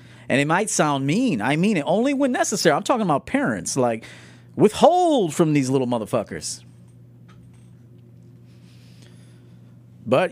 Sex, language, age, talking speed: male, English, 40-59, 130 wpm